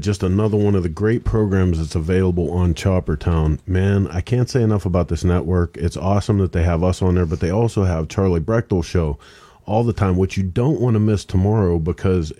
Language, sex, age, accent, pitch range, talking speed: English, male, 40-59, American, 85-95 Hz, 225 wpm